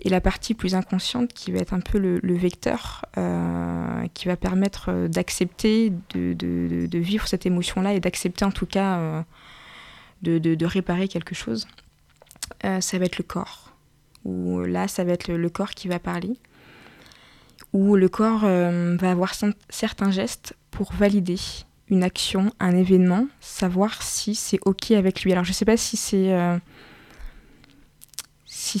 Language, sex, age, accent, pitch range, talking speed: French, female, 20-39, French, 170-195 Hz, 175 wpm